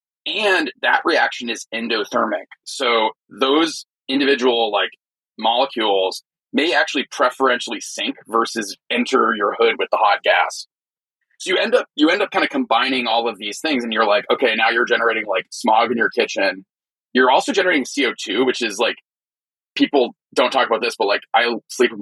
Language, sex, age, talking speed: English, male, 30-49, 175 wpm